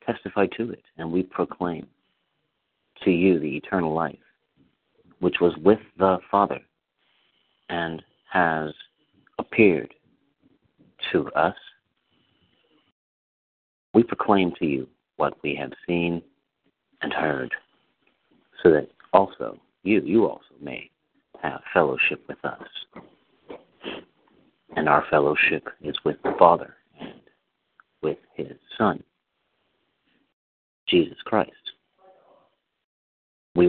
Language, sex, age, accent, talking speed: English, male, 50-69, American, 100 wpm